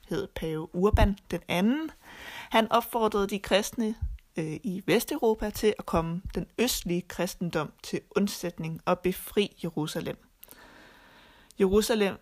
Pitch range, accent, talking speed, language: 170-205 Hz, native, 115 wpm, Danish